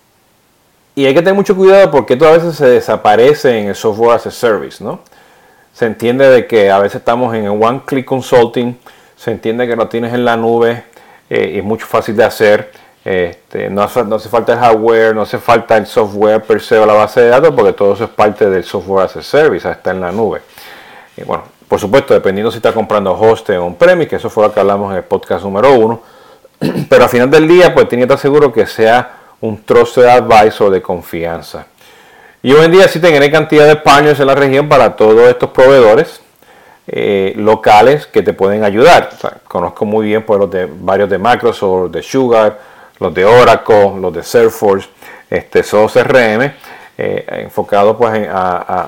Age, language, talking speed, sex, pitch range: 40-59, Spanish, 210 wpm, male, 110-170 Hz